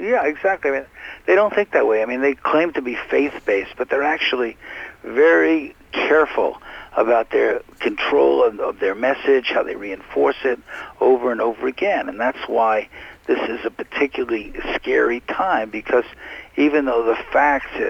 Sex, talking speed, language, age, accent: male, 170 wpm, English, 60-79, American